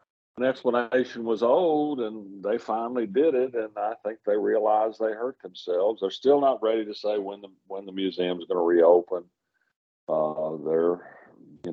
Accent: American